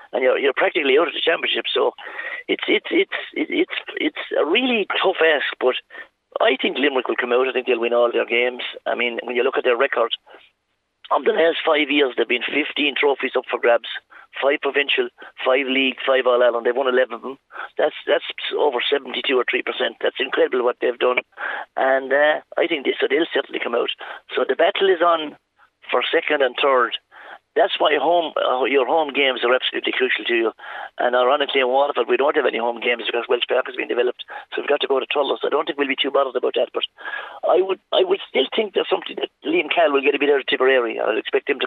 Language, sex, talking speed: English, male, 230 wpm